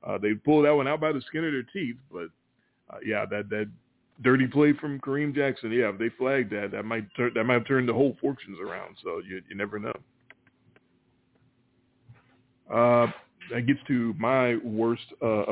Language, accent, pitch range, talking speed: English, American, 115-155 Hz, 195 wpm